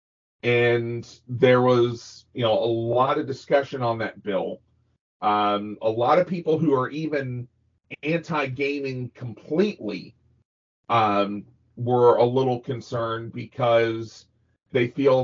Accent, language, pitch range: American, English, 110-125 Hz